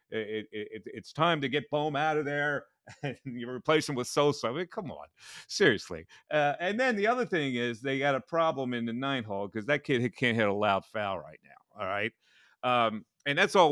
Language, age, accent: English, 40-59, American